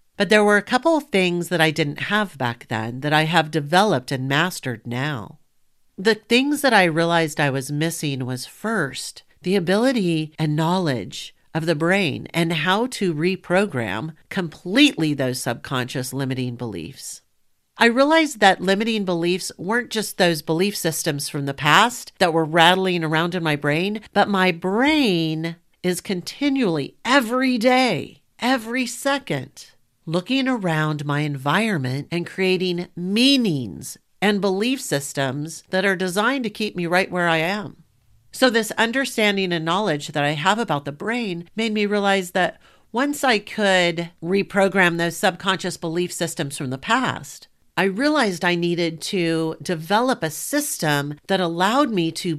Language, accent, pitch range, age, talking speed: English, American, 150-210 Hz, 50-69, 150 wpm